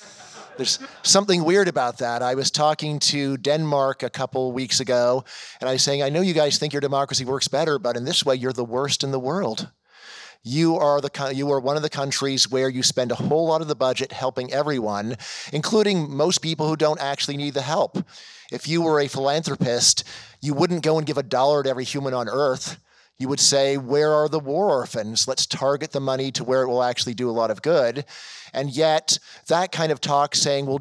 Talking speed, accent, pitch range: 215 wpm, American, 120-145 Hz